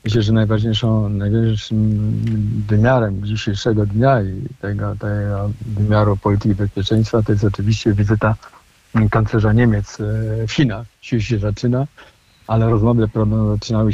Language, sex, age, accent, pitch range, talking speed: Polish, male, 50-69, native, 105-115 Hz, 115 wpm